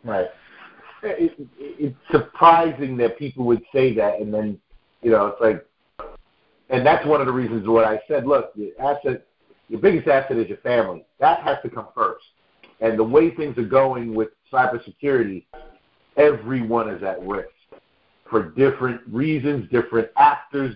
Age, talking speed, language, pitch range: 50-69, 160 wpm, English, 115-145 Hz